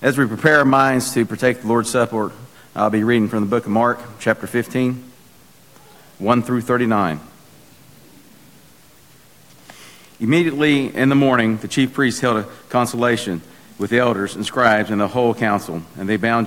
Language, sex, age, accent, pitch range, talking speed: English, male, 50-69, American, 105-125 Hz, 165 wpm